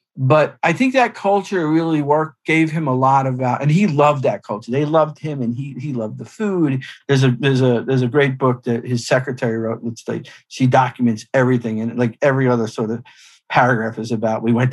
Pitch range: 120-160 Hz